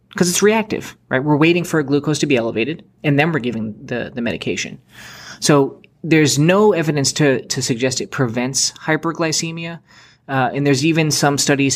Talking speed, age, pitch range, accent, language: 175 wpm, 20-39, 125-150 Hz, American, English